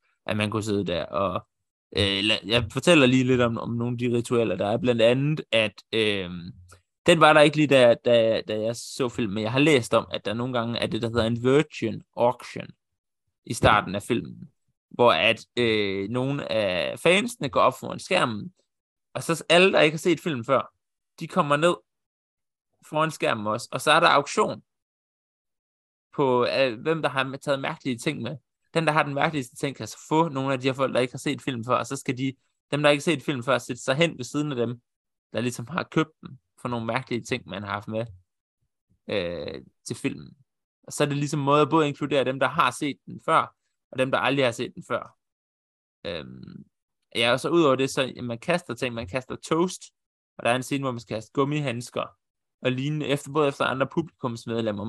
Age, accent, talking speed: 20-39, native, 220 wpm